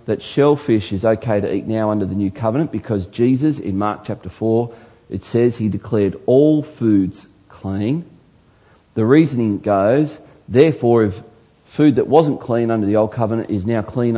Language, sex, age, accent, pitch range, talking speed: English, male, 40-59, Australian, 105-145 Hz, 170 wpm